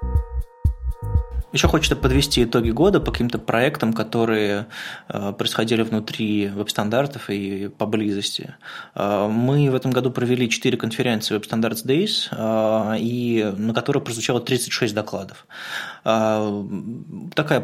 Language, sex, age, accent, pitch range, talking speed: Russian, male, 20-39, native, 105-120 Hz, 100 wpm